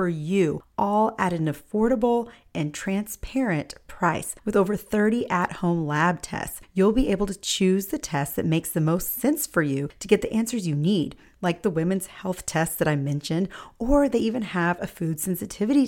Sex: female